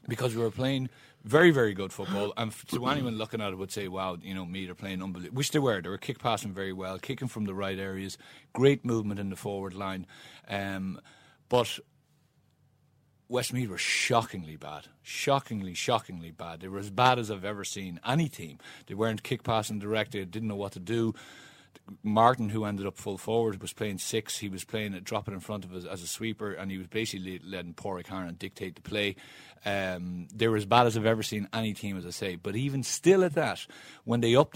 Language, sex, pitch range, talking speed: English, male, 95-120 Hz, 220 wpm